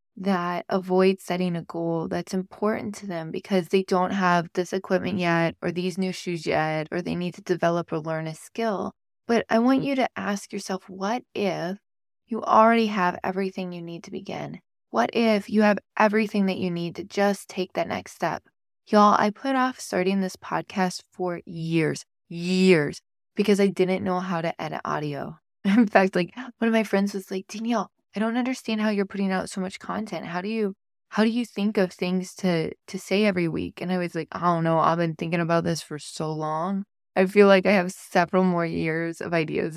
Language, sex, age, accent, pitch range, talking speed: English, female, 20-39, American, 170-205 Hz, 210 wpm